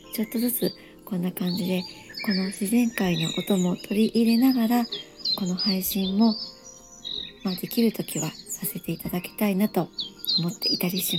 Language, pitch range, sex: Japanese, 180-225 Hz, male